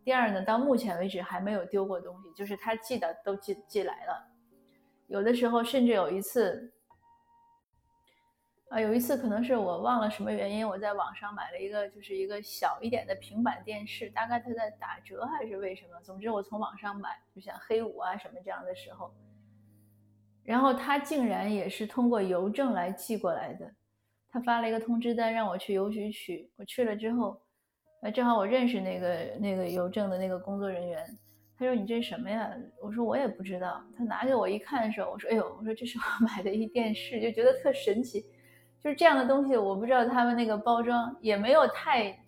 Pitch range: 195-240 Hz